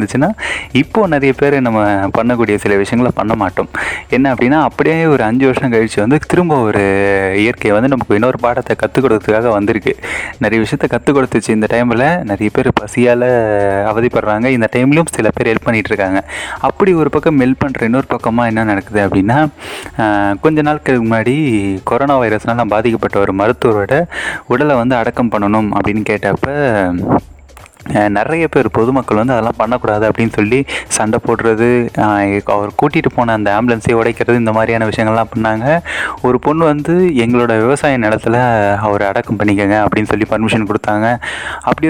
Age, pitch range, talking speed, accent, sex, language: 20-39, 105-135 Hz, 70 wpm, native, male, Tamil